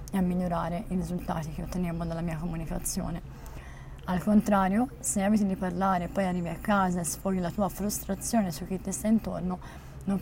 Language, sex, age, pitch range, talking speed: Italian, female, 20-39, 175-200 Hz, 190 wpm